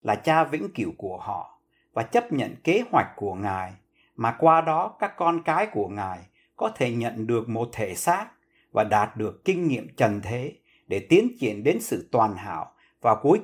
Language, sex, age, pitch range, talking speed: Vietnamese, male, 60-79, 110-180 Hz, 195 wpm